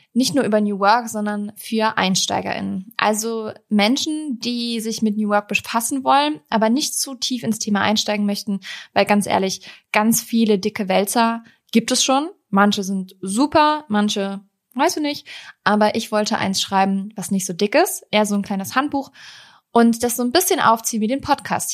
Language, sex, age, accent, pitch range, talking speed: German, female, 20-39, German, 205-245 Hz, 180 wpm